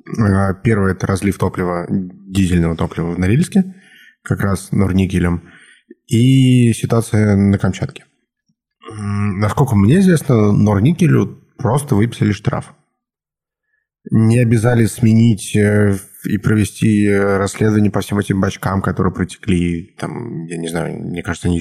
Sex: male